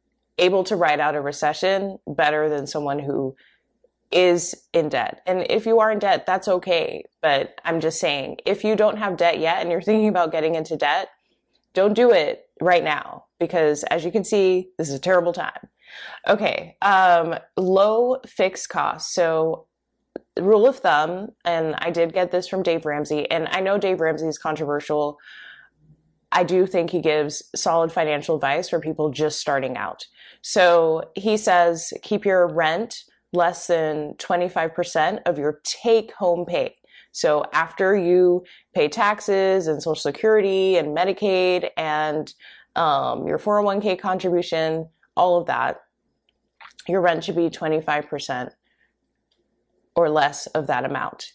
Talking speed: 155 wpm